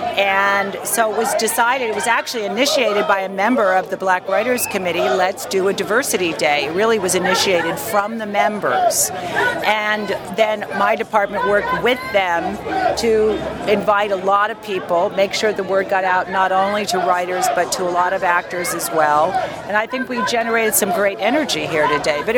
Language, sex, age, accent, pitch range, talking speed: English, female, 50-69, American, 190-225 Hz, 190 wpm